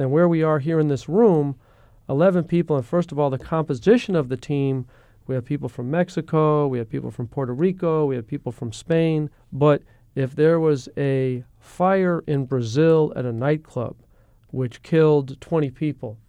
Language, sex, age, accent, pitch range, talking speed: English, male, 40-59, American, 125-155 Hz, 185 wpm